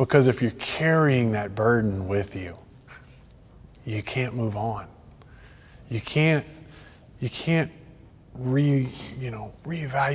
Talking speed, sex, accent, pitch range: 95 wpm, male, American, 110-135 Hz